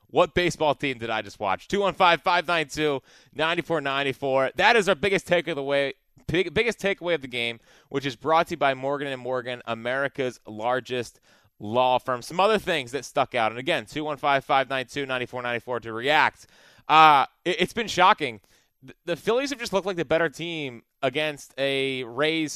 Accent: American